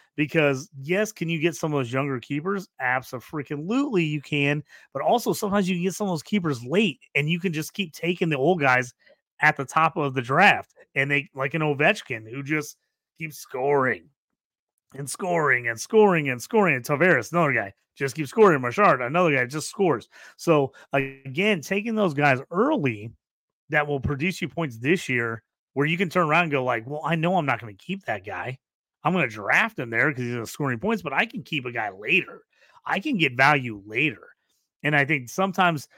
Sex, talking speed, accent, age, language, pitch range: male, 205 wpm, American, 30-49, English, 135-180 Hz